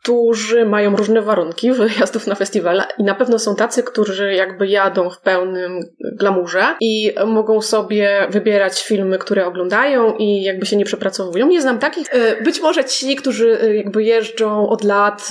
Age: 20-39